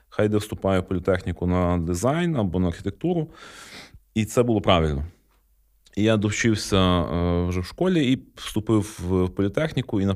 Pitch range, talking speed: 90-110 Hz, 155 wpm